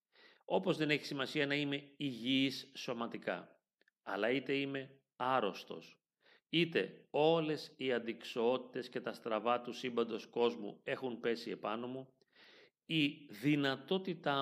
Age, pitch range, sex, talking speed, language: 40-59, 120-145 Hz, male, 115 wpm, Greek